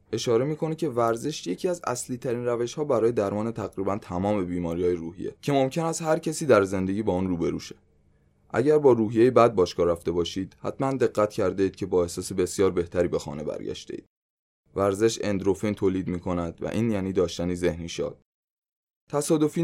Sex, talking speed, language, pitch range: male, 180 wpm, Persian, 90-115 Hz